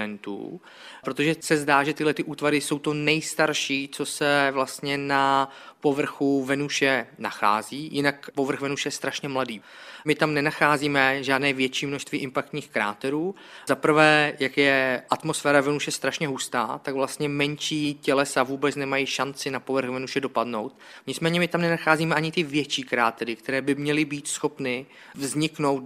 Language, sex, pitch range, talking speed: Czech, male, 135-150 Hz, 150 wpm